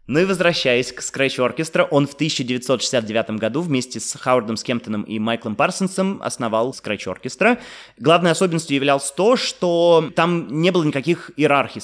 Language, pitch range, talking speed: Russian, 115-150 Hz, 150 wpm